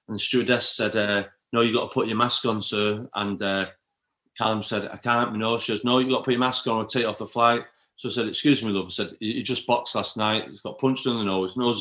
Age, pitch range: 40-59, 105-130 Hz